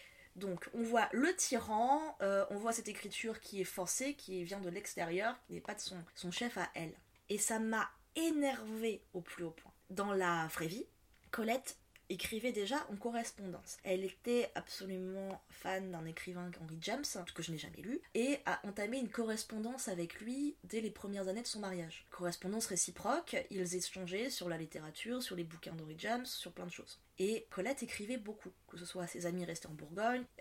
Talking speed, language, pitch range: 195 wpm, French, 175-225 Hz